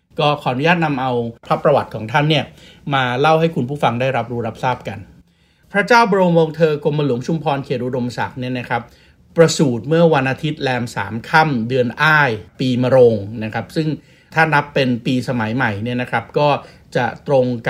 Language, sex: Thai, male